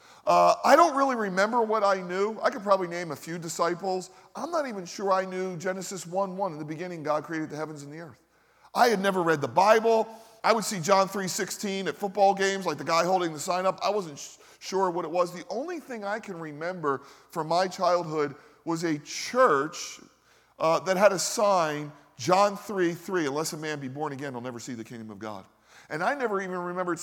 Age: 40-59